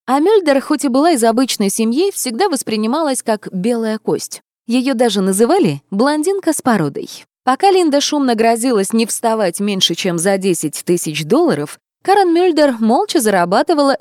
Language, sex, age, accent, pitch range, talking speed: Russian, female, 20-39, native, 195-280 Hz, 150 wpm